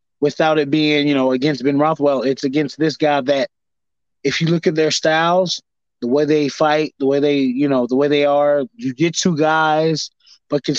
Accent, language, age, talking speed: American, English, 20-39, 210 wpm